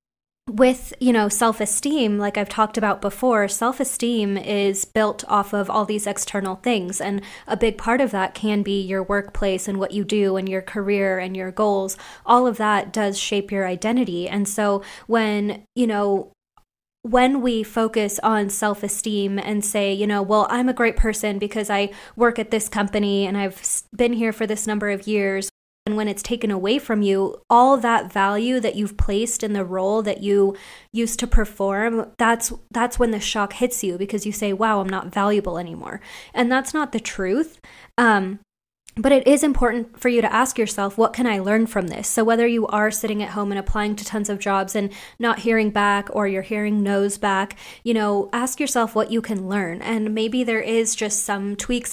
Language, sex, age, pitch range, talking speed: English, female, 20-39, 200-230 Hz, 200 wpm